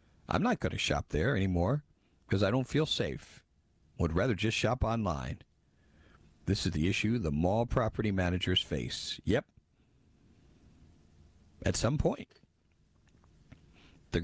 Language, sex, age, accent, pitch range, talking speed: English, male, 50-69, American, 80-125 Hz, 130 wpm